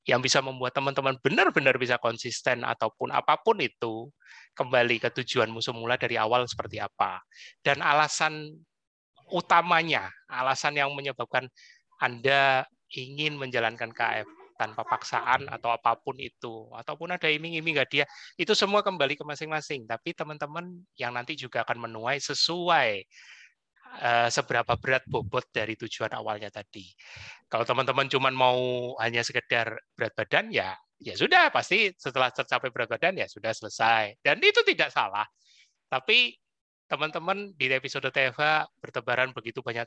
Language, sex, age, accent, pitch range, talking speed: Indonesian, male, 30-49, native, 120-150 Hz, 135 wpm